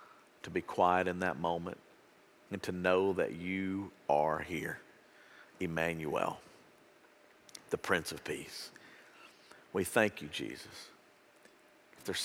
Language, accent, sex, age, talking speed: English, American, male, 50-69, 120 wpm